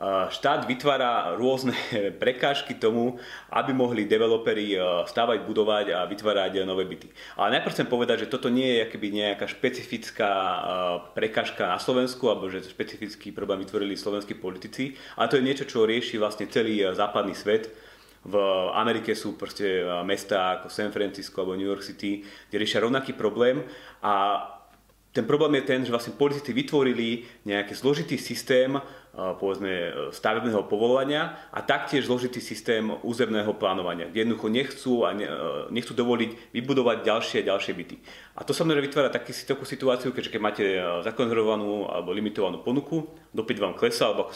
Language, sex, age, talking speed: Slovak, male, 30-49, 150 wpm